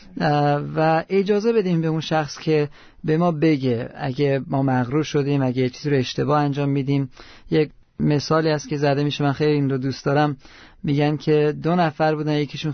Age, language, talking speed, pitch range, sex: 40-59, Persian, 180 wpm, 145-175 Hz, male